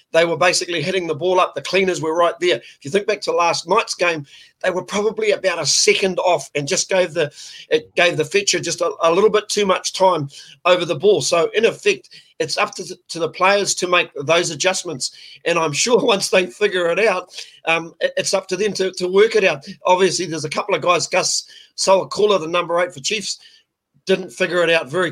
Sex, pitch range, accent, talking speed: male, 165-190 Hz, Australian, 230 wpm